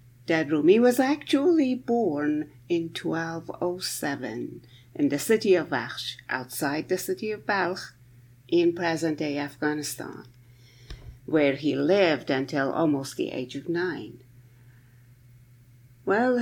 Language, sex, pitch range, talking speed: English, female, 125-175 Hz, 110 wpm